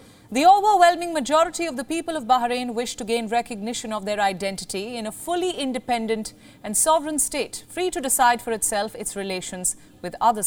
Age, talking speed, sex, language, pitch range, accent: 40-59, 180 wpm, female, English, 225-305 Hz, Indian